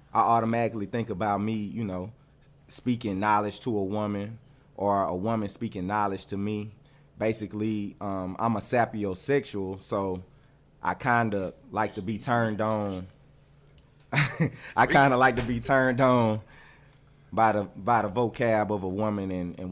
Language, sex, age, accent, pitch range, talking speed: English, male, 20-39, American, 100-120 Hz, 150 wpm